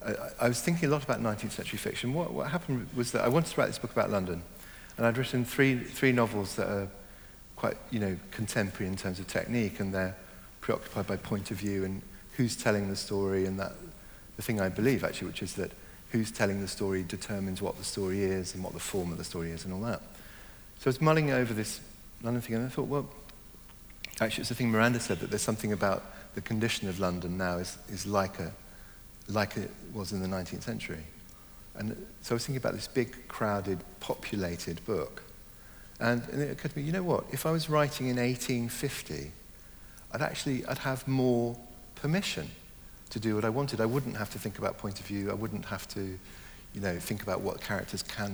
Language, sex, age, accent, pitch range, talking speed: English, male, 50-69, British, 95-120 Hz, 220 wpm